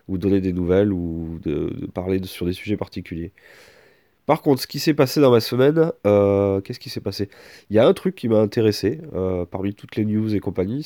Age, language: 30-49, French